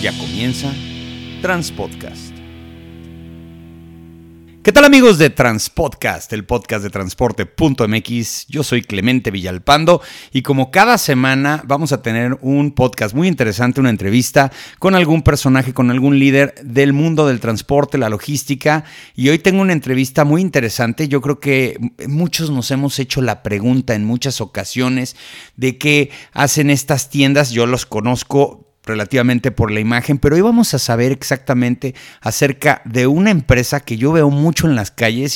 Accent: Mexican